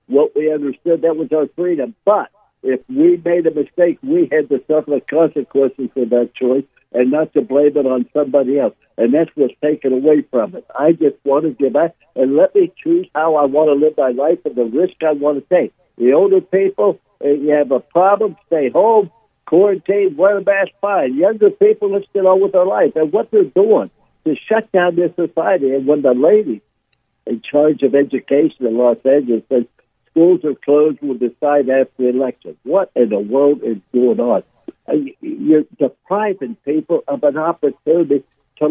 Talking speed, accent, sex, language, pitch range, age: 195 wpm, American, male, English, 140-195 Hz, 60-79